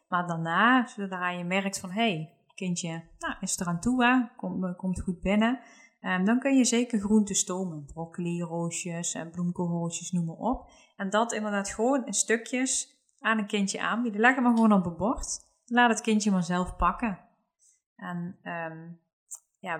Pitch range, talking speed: 175-230 Hz, 170 wpm